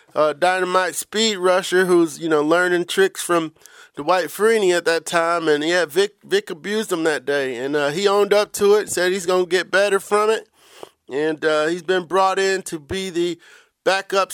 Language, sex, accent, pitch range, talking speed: English, male, American, 175-215 Hz, 200 wpm